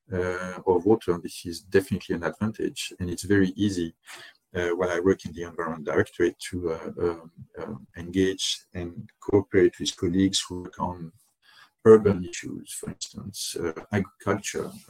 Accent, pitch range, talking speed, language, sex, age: French, 85-100 Hz, 155 wpm, English, male, 50-69